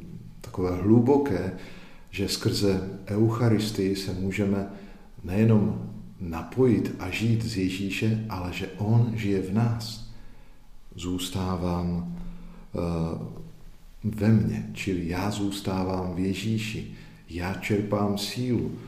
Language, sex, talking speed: Slovak, male, 95 wpm